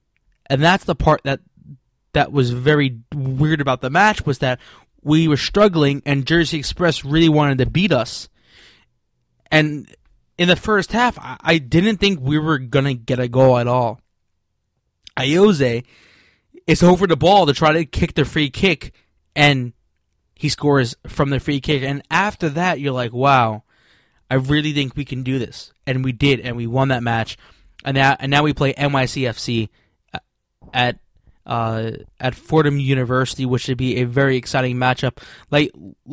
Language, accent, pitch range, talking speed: English, American, 125-150 Hz, 165 wpm